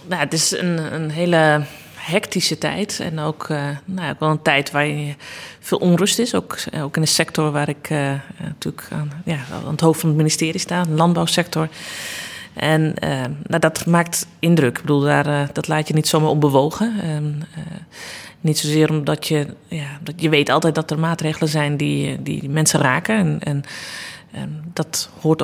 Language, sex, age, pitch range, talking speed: Dutch, female, 30-49, 150-175 Hz, 190 wpm